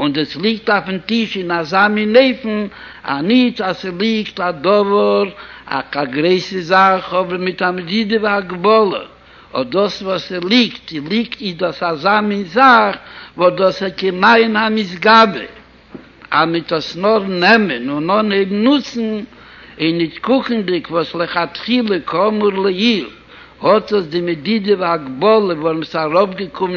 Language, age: Hebrew, 60-79